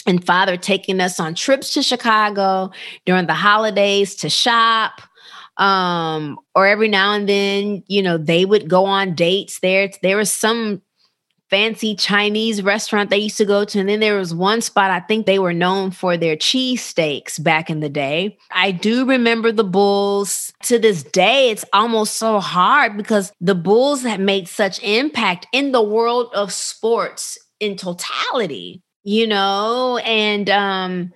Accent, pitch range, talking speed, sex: American, 180-220 Hz, 170 wpm, female